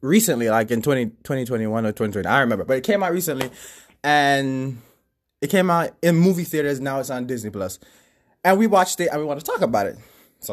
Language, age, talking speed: English, 20-39, 210 wpm